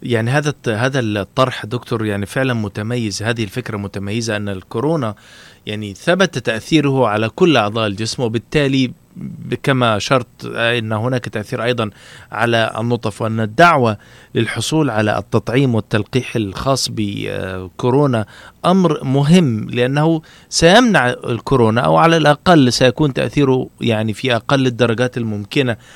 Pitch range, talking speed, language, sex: 110-135 Hz, 120 wpm, Arabic, male